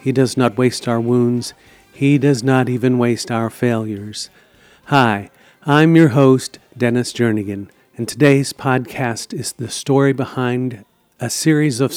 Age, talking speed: 50-69, 145 wpm